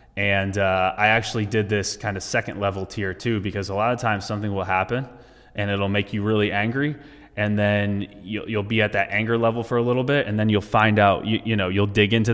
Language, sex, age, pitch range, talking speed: English, male, 20-39, 100-115 Hz, 245 wpm